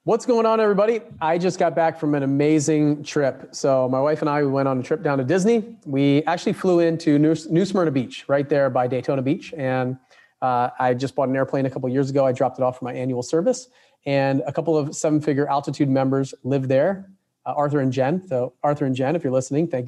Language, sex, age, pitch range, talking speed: English, male, 30-49, 130-155 Hz, 235 wpm